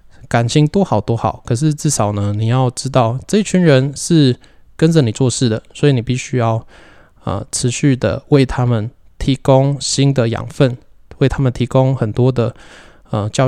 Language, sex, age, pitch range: Chinese, male, 20-39, 115-140 Hz